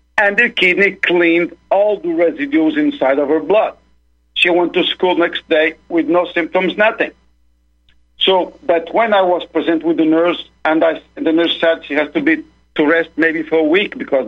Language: English